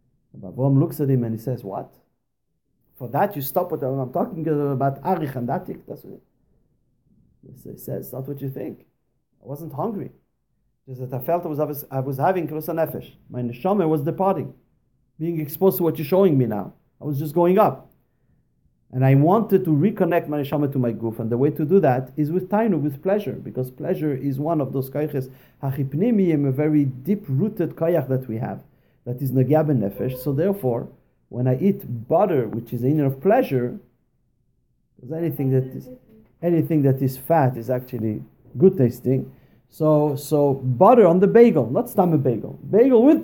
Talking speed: 180 wpm